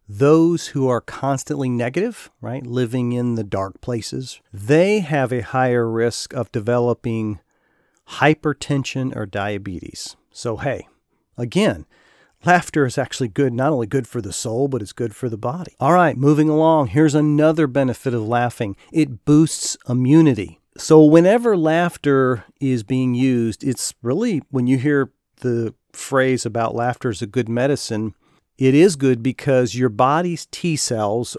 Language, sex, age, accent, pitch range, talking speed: English, male, 40-59, American, 115-145 Hz, 150 wpm